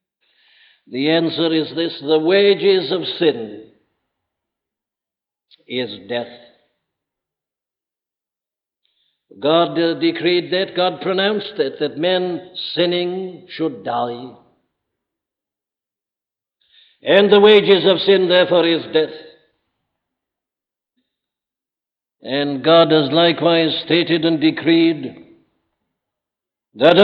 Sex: male